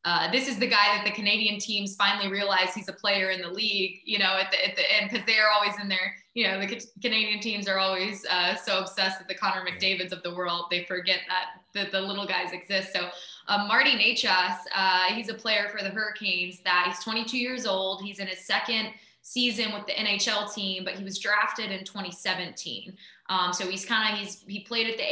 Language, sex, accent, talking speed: English, female, American, 230 wpm